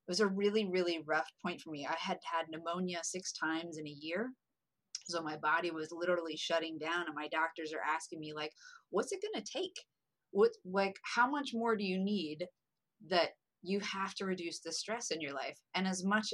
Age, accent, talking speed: 30-49, American, 210 wpm